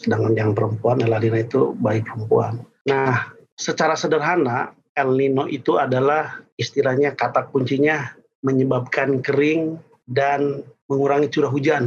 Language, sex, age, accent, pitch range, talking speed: Indonesian, male, 40-59, native, 125-150 Hz, 115 wpm